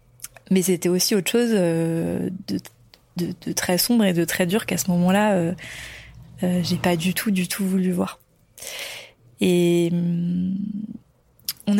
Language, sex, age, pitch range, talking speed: French, female, 20-39, 175-210 Hz, 160 wpm